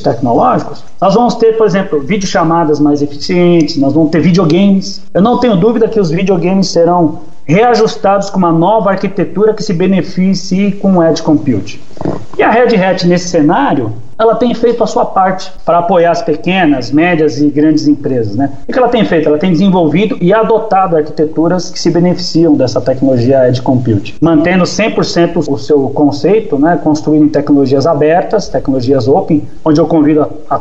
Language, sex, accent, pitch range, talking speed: Portuguese, male, Brazilian, 150-190 Hz, 175 wpm